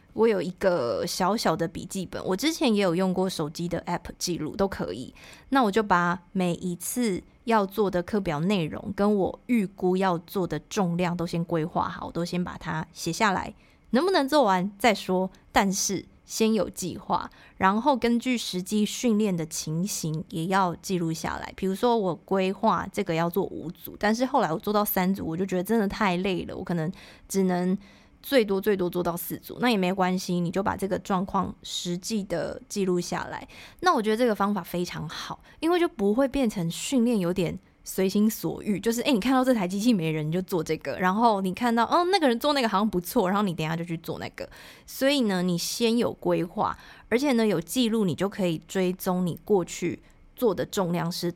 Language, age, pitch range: Chinese, 20-39, 175-215 Hz